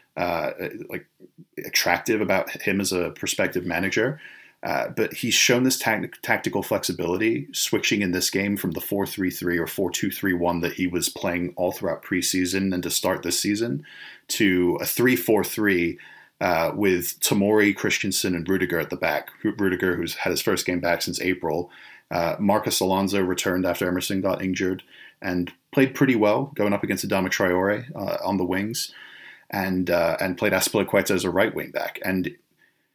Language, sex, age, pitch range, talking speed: English, male, 30-49, 90-100 Hz, 165 wpm